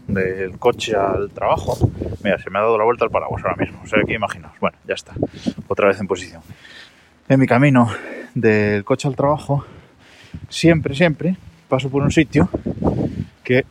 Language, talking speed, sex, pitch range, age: Spanish, 175 wpm, male, 105-140 Hz, 20-39